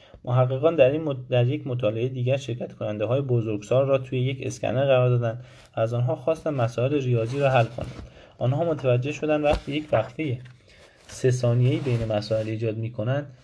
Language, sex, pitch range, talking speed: Persian, male, 110-140 Hz, 165 wpm